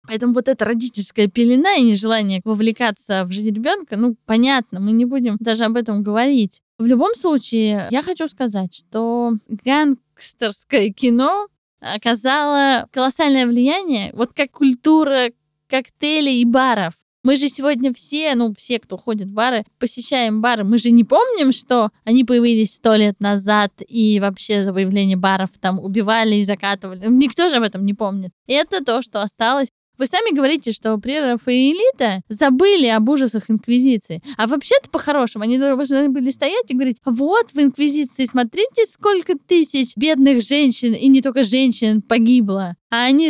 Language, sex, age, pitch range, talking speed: Russian, female, 20-39, 215-275 Hz, 155 wpm